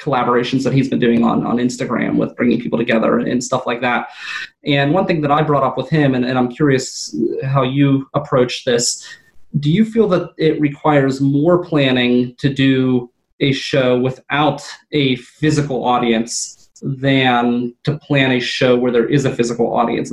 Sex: male